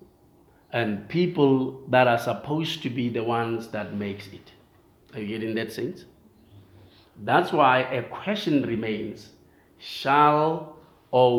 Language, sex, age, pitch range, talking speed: English, male, 50-69, 110-135 Hz, 125 wpm